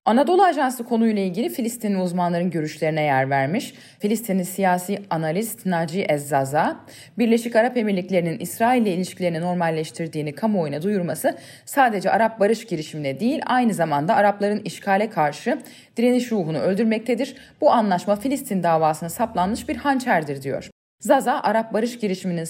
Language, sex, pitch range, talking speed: Turkish, female, 170-235 Hz, 130 wpm